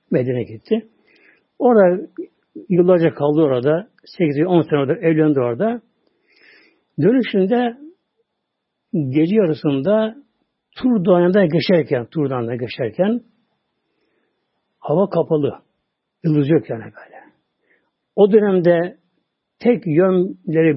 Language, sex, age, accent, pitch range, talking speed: Turkish, male, 60-79, native, 145-210 Hz, 80 wpm